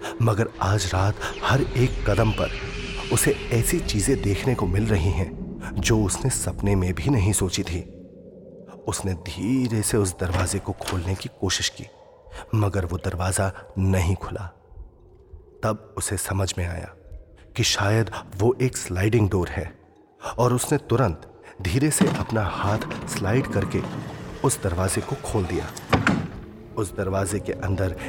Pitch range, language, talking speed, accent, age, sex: 90-110 Hz, Hindi, 145 wpm, native, 30-49, male